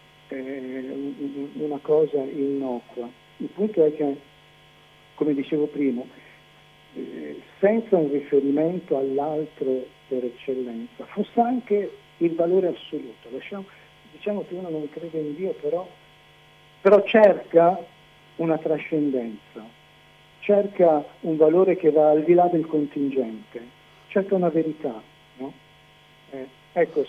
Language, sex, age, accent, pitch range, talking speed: Italian, male, 50-69, native, 140-175 Hz, 110 wpm